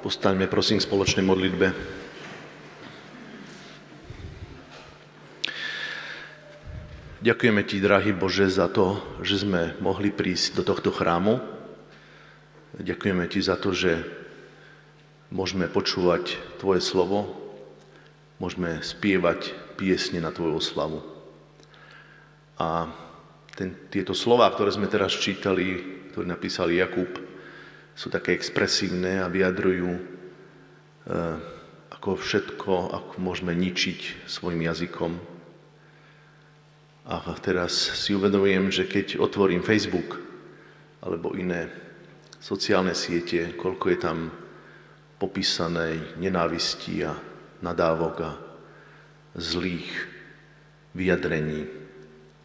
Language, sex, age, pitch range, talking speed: Slovak, male, 40-59, 85-100 Hz, 90 wpm